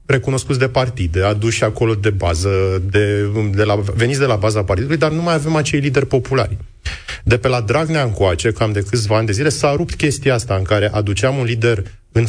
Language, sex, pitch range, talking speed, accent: Romanian, male, 100-130 Hz, 210 wpm, native